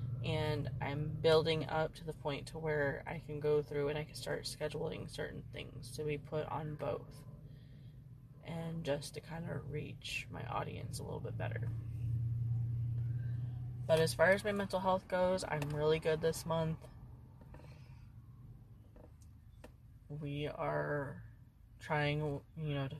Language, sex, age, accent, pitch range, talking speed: English, female, 20-39, American, 120-150 Hz, 145 wpm